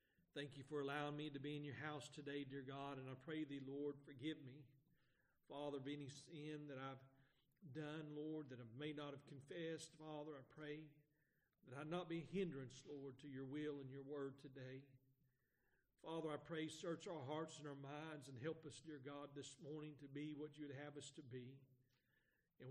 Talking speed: 205 wpm